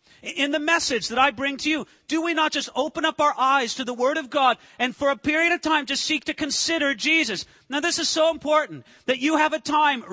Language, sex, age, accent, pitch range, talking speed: English, male, 40-59, American, 180-275 Hz, 250 wpm